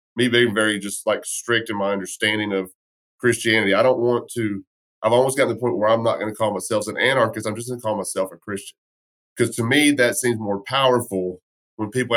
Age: 30-49